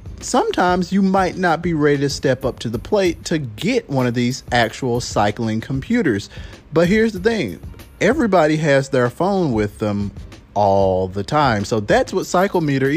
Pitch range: 115-170 Hz